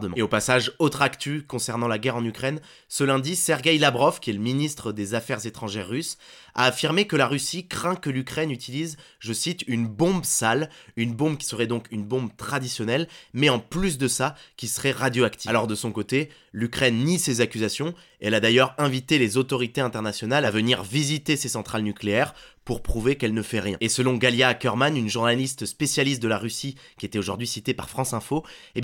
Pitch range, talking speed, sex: 110-140 Hz, 200 wpm, male